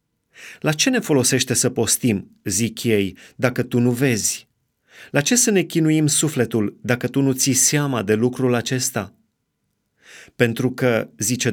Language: Romanian